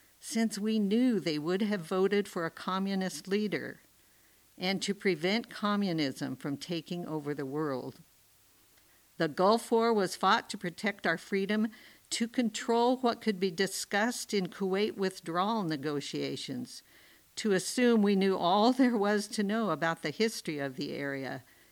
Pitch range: 160-205 Hz